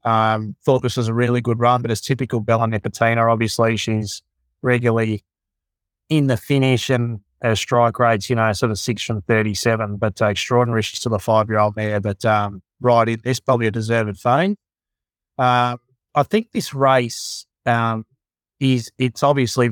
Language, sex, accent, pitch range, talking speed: English, male, Australian, 110-125 Hz, 165 wpm